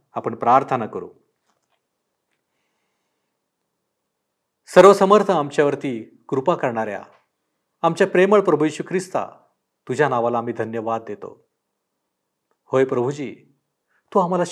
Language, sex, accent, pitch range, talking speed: Marathi, male, native, 125-180 Hz, 85 wpm